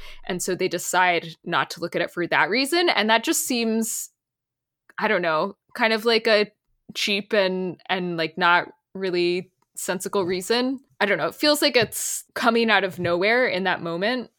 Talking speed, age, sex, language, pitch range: 190 wpm, 20-39, female, English, 180-230 Hz